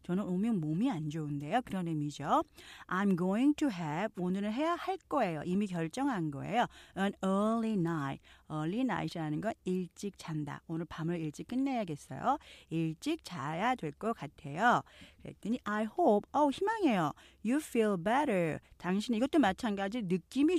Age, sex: 40-59, female